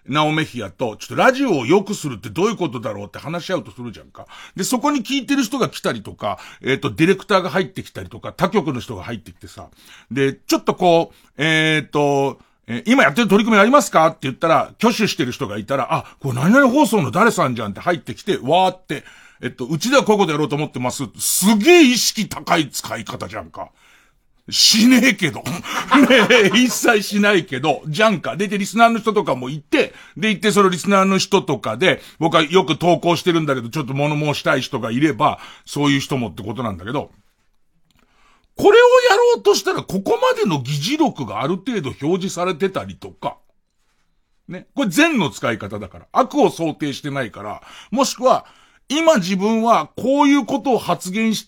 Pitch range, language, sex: 135-225 Hz, Japanese, male